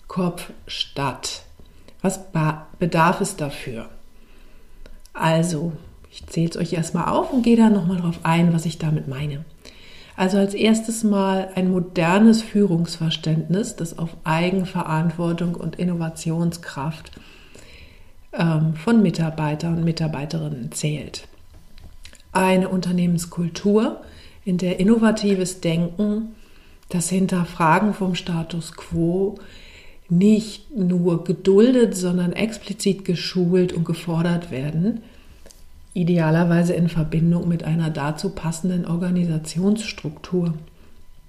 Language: German